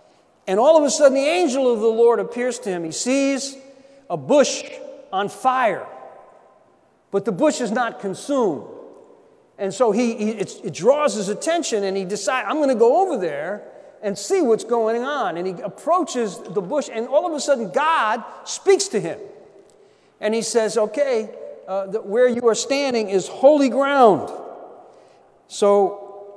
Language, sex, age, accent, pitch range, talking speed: English, male, 40-59, American, 195-270 Hz, 170 wpm